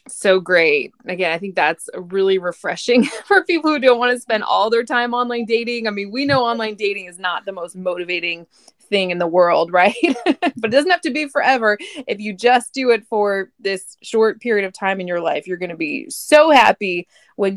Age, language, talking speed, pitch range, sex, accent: 20-39, English, 220 wpm, 185-245 Hz, female, American